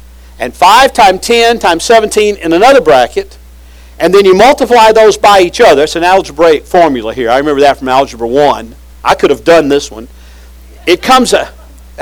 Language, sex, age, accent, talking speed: English, male, 50-69, American, 185 wpm